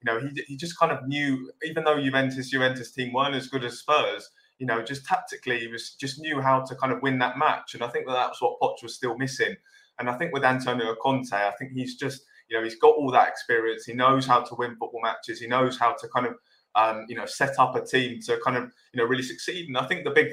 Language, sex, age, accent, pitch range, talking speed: English, male, 20-39, British, 120-135 Hz, 270 wpm